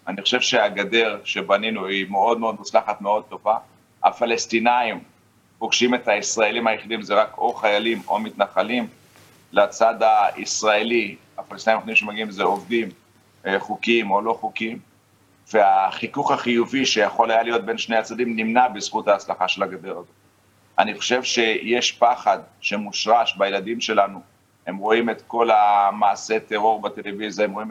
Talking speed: 135 wpm